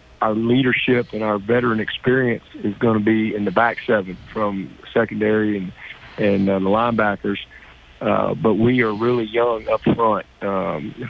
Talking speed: 160 wpm